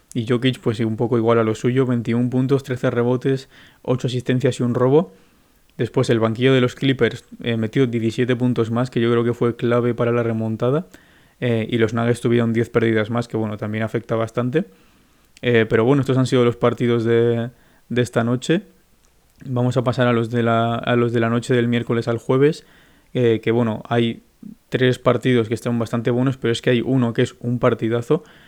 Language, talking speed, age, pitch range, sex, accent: Spanish, 205 wpm, 20-39, 115-125 Hz, male, Spanish